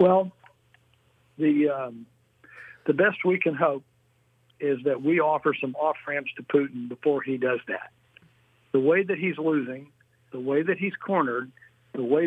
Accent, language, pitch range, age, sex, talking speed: American, English, 130-165 Hz, 60-79, male, 155 wpm